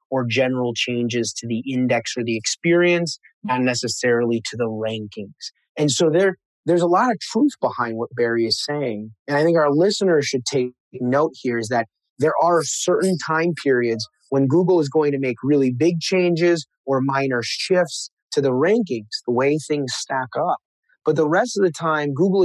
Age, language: 30-49, English